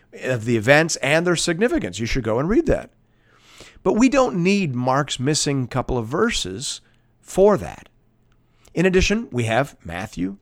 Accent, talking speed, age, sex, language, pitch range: American, 160 wpm, 50-69, male, English, 110-160 Hz